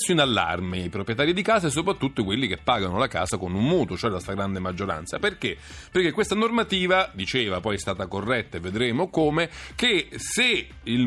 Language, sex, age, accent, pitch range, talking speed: Italian, male, 40-59, native, 105-165 Hz, 190 wpm